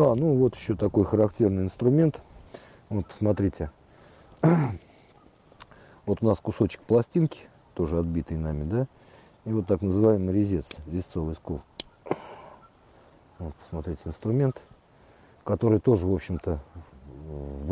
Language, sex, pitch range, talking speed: Russian, male, 85-115 Hz, 110 wpm